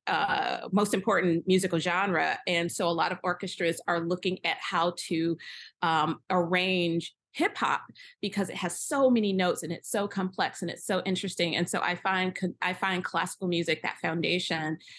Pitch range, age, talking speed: 160-185 Hz, 30-49, 175 wpm